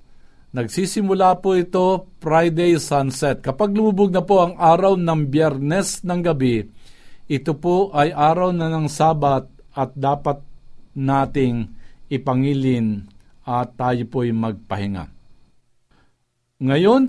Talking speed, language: 110 wpm, Filipino